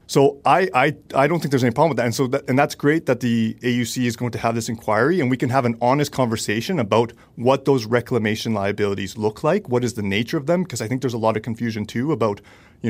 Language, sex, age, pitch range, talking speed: English, male, 30-49, 110-130 Hz, 265 wpm